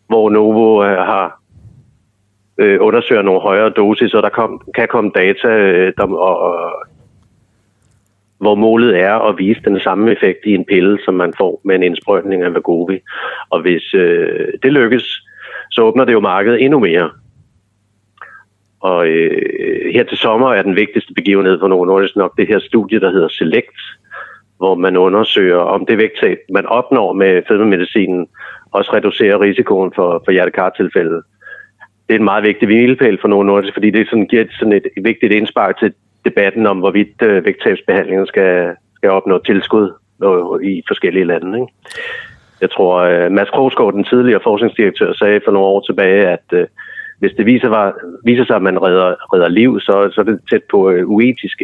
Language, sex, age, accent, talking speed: Danish, male, 60-79, native, 175 wpm